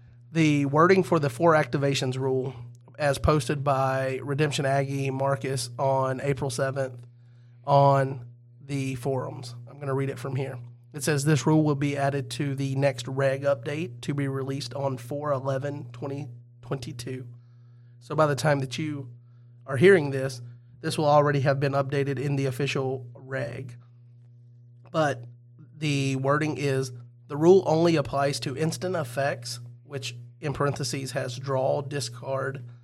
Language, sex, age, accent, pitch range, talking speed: English, male, 30-49, American, 125-145 Hz, 150 wpm